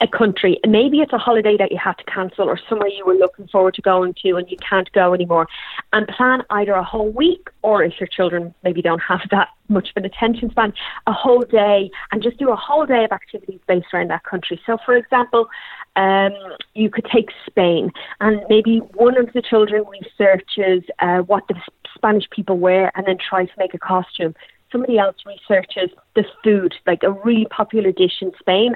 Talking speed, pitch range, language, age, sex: 205 wpm, 185-225 Hz, English, 30-49, female